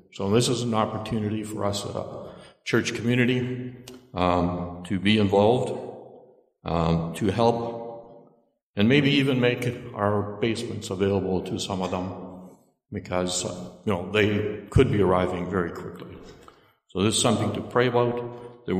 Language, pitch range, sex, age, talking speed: English, 95-115 Hz, male, 60-79, 145 wpm